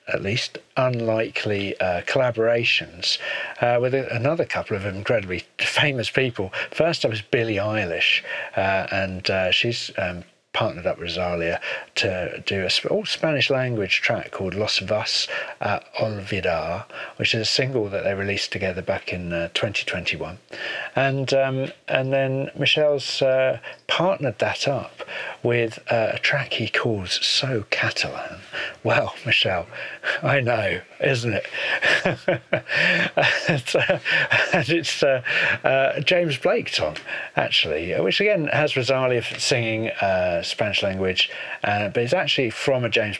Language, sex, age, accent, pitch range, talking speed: English, male, 50-69, British, 100-135 Hz, 135 wpm